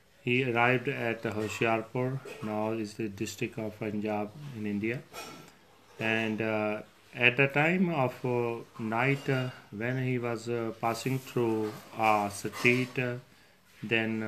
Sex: male